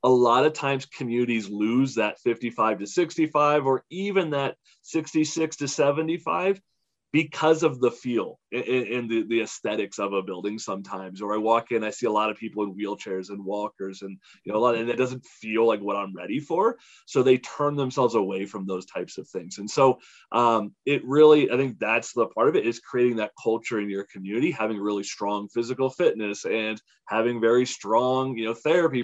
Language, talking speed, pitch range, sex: English, 200 wpm, 105-140 Hz, male